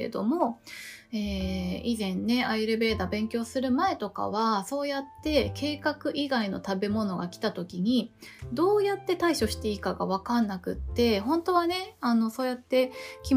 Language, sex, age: Japanese, female, 20-39